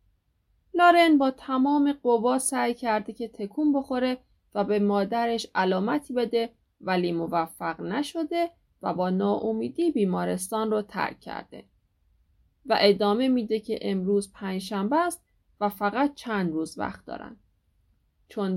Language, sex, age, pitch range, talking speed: Persian, female, 30-49, 180-270 Hz, 125 wpm